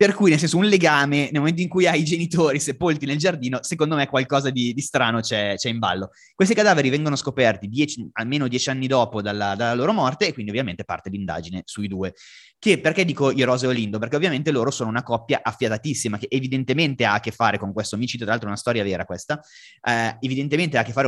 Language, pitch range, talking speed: Italian, 110-145 Hz, 235 wpm